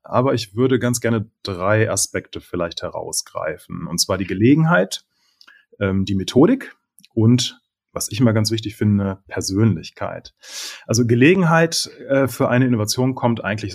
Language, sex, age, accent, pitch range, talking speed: German, male, 30-49, German, 105-130 Hz, 140 wpm